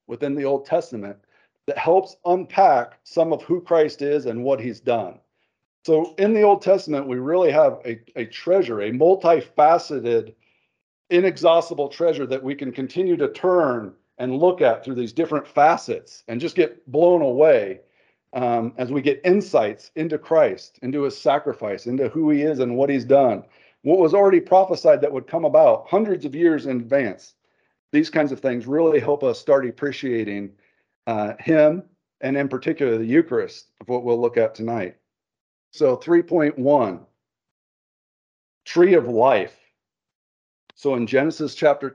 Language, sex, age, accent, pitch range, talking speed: English, male, 40-59, American, 125-170 Hz, 160 wpm